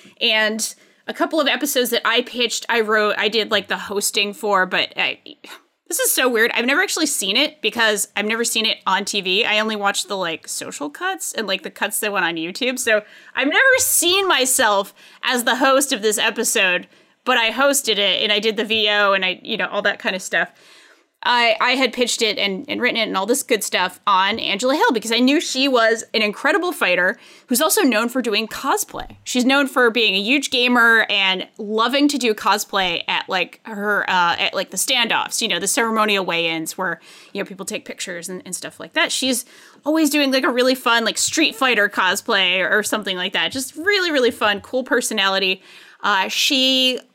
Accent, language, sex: American, English, female